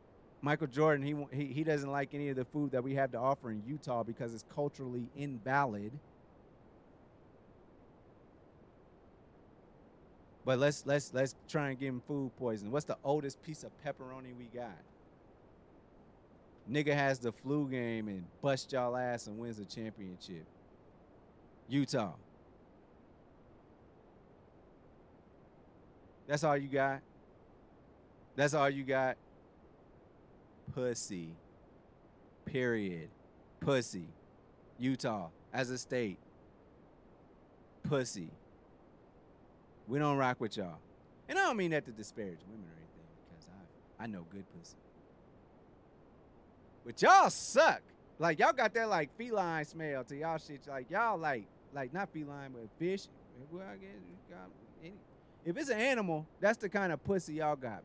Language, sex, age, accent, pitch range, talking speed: English, male, 30-49, American, 115-150 Hz, 130 wpm